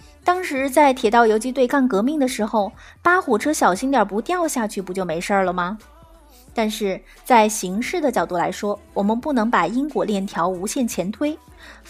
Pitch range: 205-270 Hz